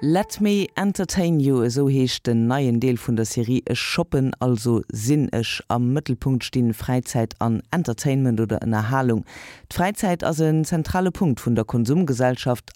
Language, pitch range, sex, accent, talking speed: German, 125-175 Hz, female, German, 155 wpm